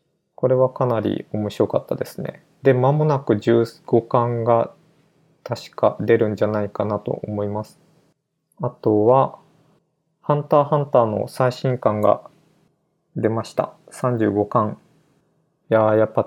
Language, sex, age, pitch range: Japanese, male, 20-39, 110-150 Hz